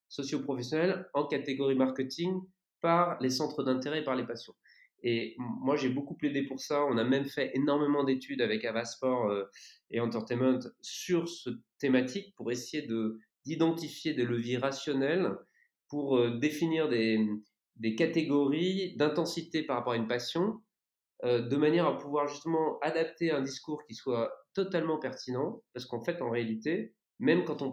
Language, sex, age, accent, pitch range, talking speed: French, male, 30-49, French, 125-155 Hz, 150 wpm